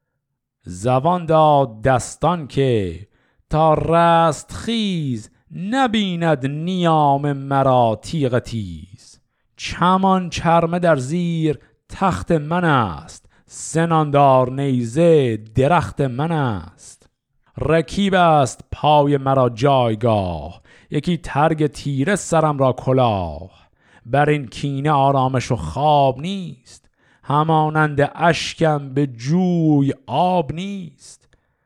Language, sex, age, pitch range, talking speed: Persian, male, 50-69, 120-155 Hz, 90 wpm